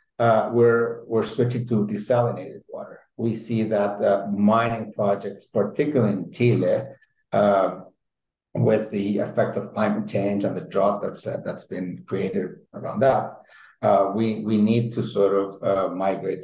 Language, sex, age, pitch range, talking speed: English, male, 50-69, 100-120 Hz, 155 wpm